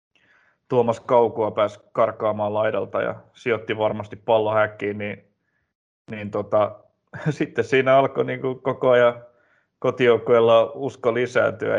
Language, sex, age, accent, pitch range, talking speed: Finnish, male, 20-39, native, 105-120 Hz, 105 wpm